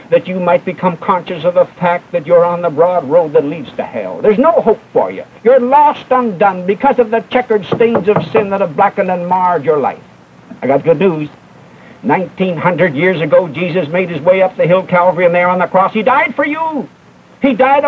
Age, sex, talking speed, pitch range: 60-79, male, 220 wpm, 175-210 Hz